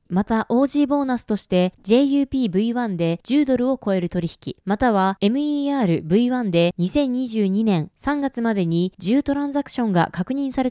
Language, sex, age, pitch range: Japanese, female, 20-39, 190-275 Hz